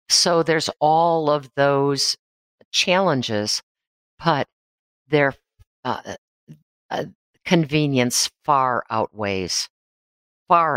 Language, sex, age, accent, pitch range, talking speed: English, female, 50-69, American, 115-140 Hz, 80 wpm